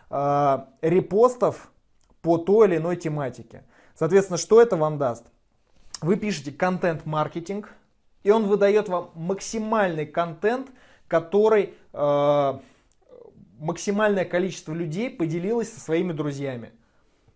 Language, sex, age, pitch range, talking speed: Russian, male, 20-39, 155-205 Hz, 95 wpm